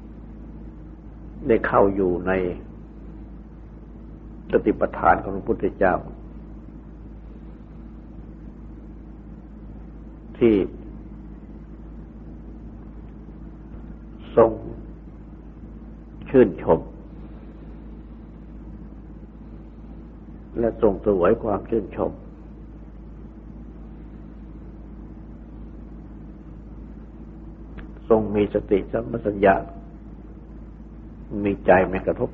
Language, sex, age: Thai, male, 60-79